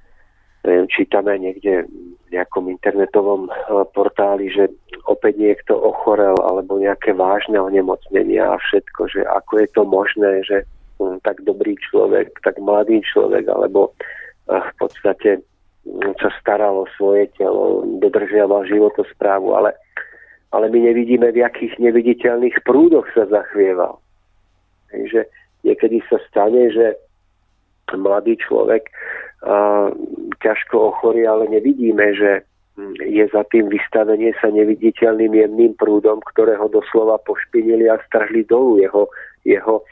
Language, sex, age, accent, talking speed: Czech, male, 40-59, native, 115 wpm